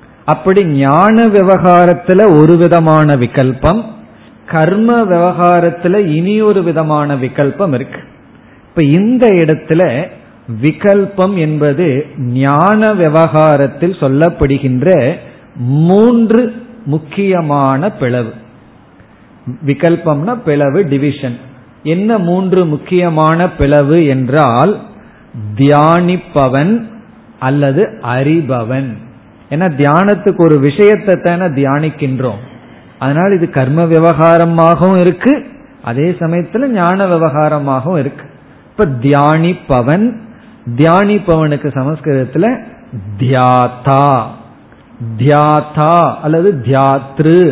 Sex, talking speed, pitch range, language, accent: male, 75 wpm, 135-185 Hz, Tamil, native